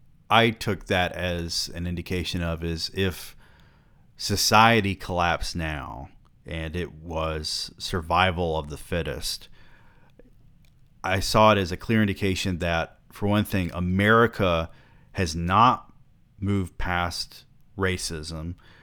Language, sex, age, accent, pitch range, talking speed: English, male, 30-49, American, 80-95 Hz, 115 wpm